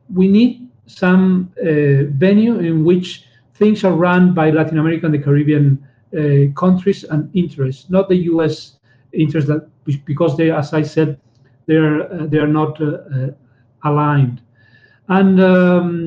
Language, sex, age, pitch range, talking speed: English, male, 40-59, 140-180 Hz, 145 wpm